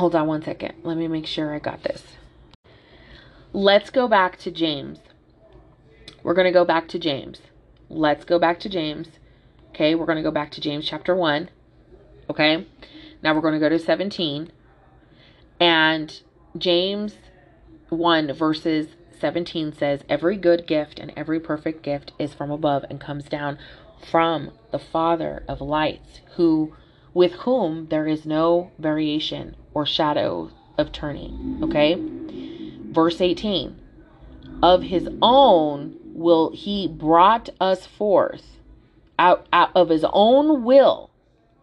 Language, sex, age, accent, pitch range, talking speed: English, female, 30-49, American, 155-190 Hz, 140 wpm